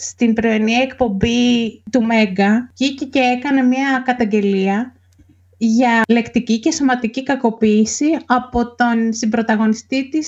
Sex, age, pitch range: female, 30-49, 215-265 Hz